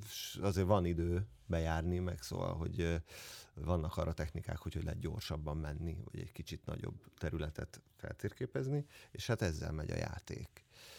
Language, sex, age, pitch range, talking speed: Hungarian, male, 40-59, 85-110 Hz, 145 wpm